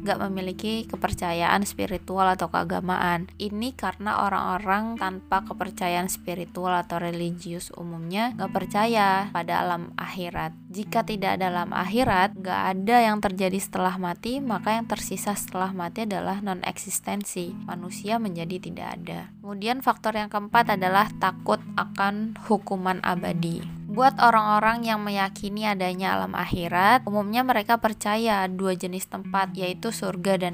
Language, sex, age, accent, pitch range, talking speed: Indonesian, female, 20-39, native, 180-215 Hz, 135 wpm